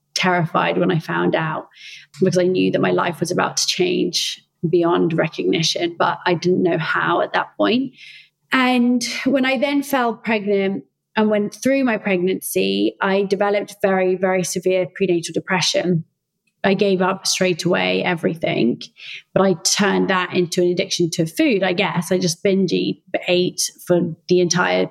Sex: female